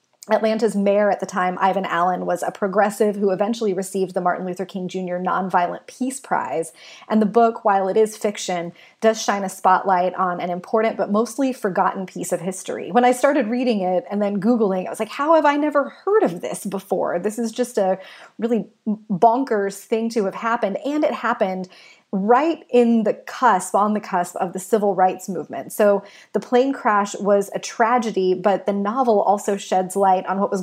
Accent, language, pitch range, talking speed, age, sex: American, English, 180-220 Hz, 200 wpm, 30-49, female